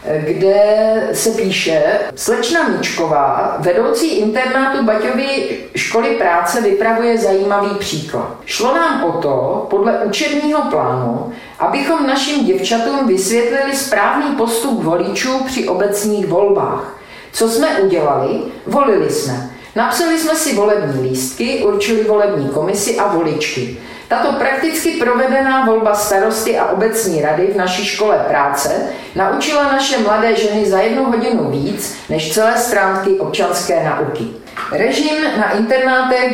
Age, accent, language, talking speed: 50-69, native, Czech, 120 wpm